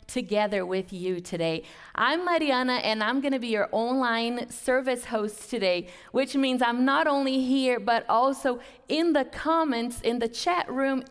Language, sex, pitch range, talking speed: English, female, 205-270 Hz, 160 wpm